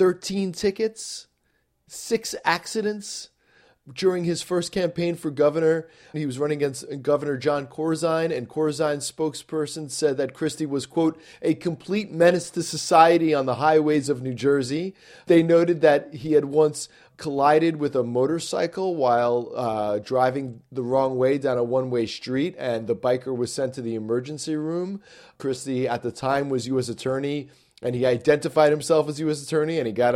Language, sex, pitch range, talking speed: English, male, 120-165 Hz, 165 wpm